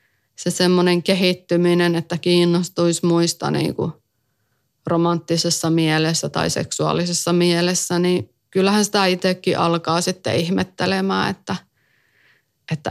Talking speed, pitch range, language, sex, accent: 100 wpm, 130-180 Hz, Finnish, female, native